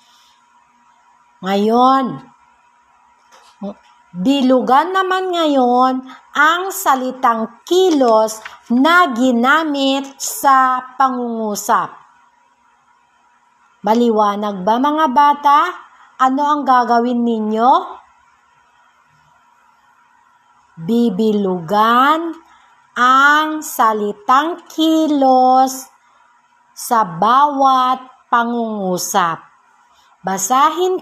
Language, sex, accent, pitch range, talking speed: Filipino, female, native, 220-325 Hz, 50 wpm